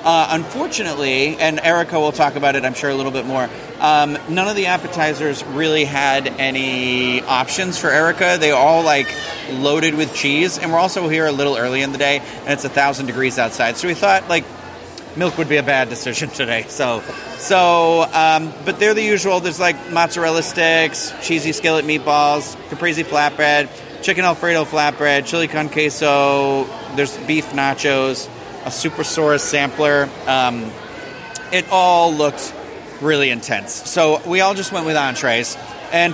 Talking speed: 165 wpm